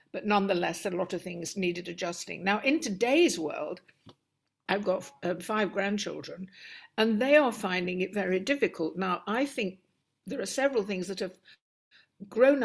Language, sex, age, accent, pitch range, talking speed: English, female, 60-79, British, 200-260 Hz, 160 wpm